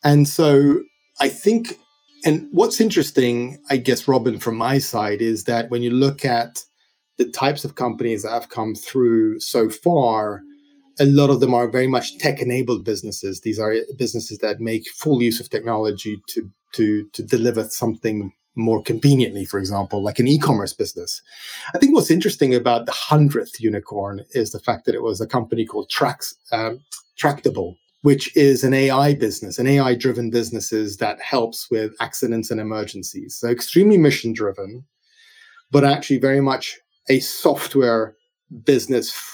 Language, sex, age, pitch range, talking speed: English, male, 30-49, 115-145 Hz, 160 wpm